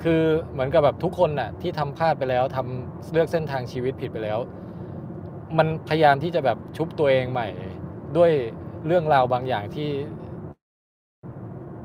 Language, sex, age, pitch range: Thai, male, 20-39, 120-155 Hz